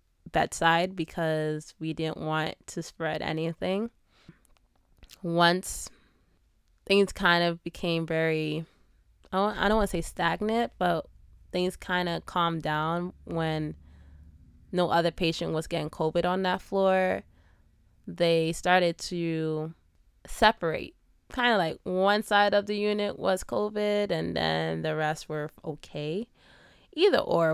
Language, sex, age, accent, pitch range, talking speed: English, female, 20-39, American, 155-190 Hz, 125 wpm